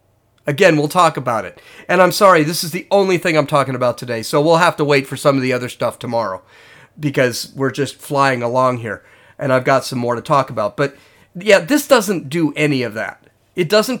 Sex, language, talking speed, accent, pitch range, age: male, English, 225 wpm, American, 125-165 Hz, 40-59